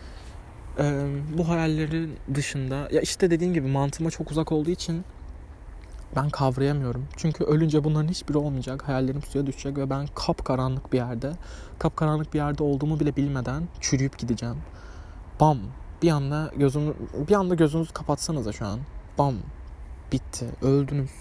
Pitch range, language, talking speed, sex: 120-155 Hz, Turkish, 145 wpm, male